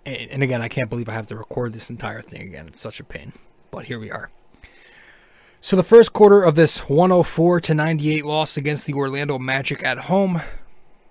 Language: English